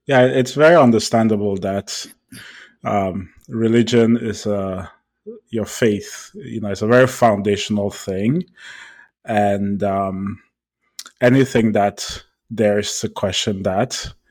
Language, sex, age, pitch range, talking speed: English, male, 20-39, 105-115 Hz, 110 wpm